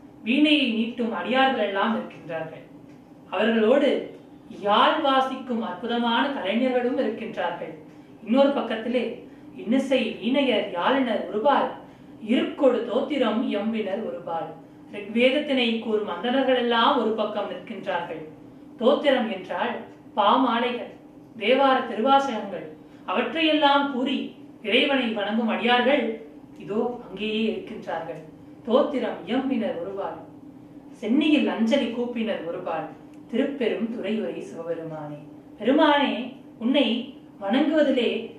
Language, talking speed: Tamil, 50 wpm